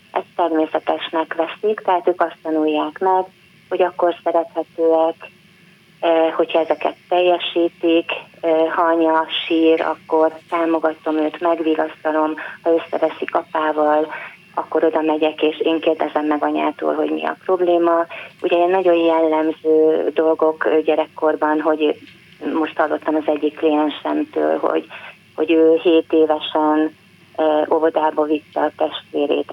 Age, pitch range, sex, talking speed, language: 30-49, 155-170 Hz, female, 115 wpm, Hungarian